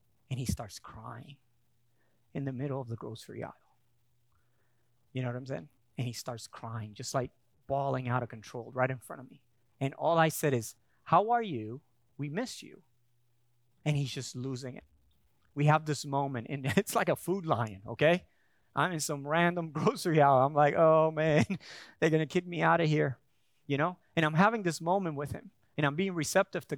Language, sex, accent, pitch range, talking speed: English, male, American, 120-180 Hz, 200 wpm